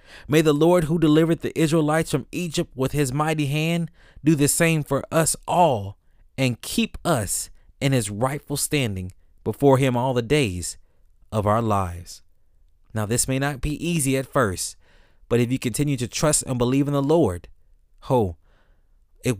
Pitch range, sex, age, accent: 100-150 Hz, male, 20-39, American